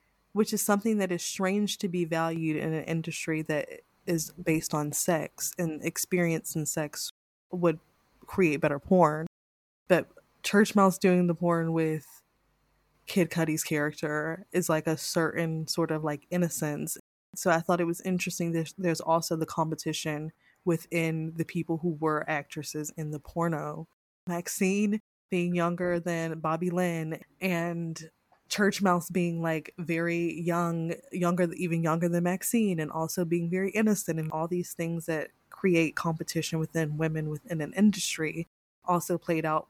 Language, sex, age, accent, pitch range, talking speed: English, female, 20-39, American, 155-175 Hz, 150 wpm